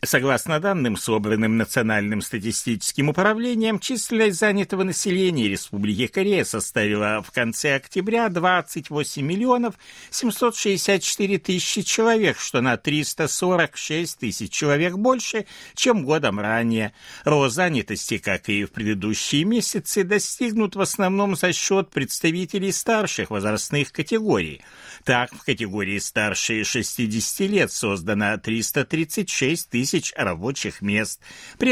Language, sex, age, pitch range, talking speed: Russian, male, 60-79, 120-200 Hz, 110 wpm